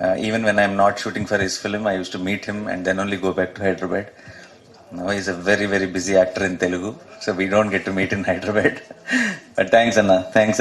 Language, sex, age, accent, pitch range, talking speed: Tamil, male, 30-49, native, 95-115 Hz, 245 wpm